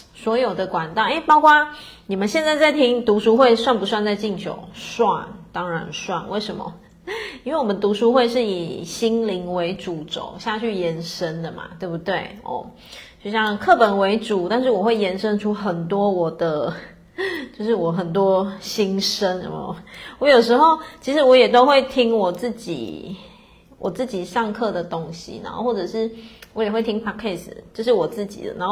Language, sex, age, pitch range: Chinese, female, 30-49, 185-240 Hz